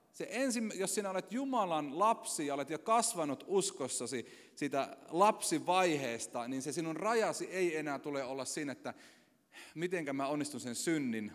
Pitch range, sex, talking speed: 135-225 Hz, male, 155 wpm